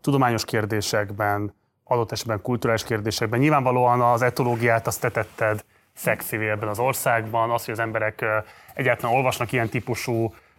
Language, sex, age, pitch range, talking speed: Hungarian, male, 20-39, 110-135 Hz, 135 wpm